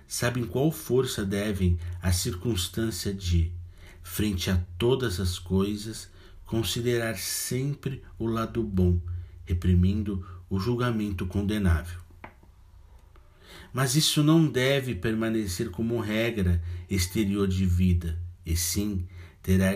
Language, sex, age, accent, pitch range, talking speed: Portuguese, male, 60-79, Brazilian, 90-115 Hz, 105 wpm